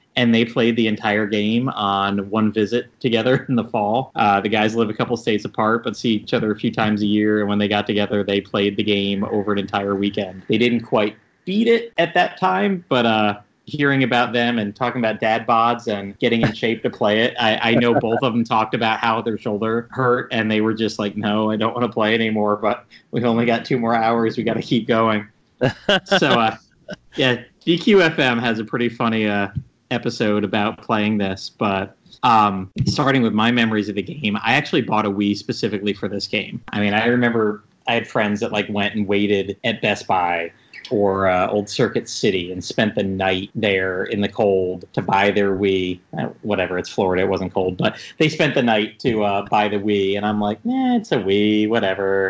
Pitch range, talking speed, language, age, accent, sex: 100-120 Hz, 220 wpm, English, 30-49, American, male